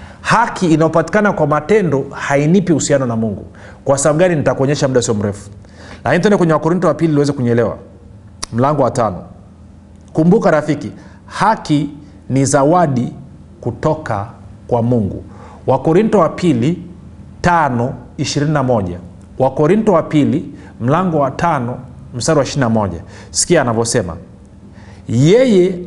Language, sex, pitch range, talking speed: Swahili, male, 100-165 Hz, 115 wpm